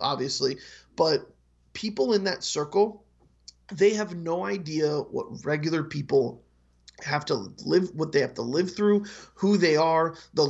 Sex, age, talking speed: male, 30-49, 150 wpm